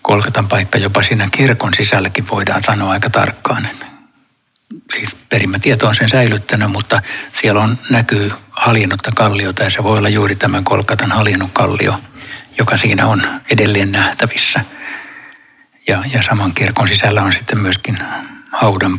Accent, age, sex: native, 60-79, male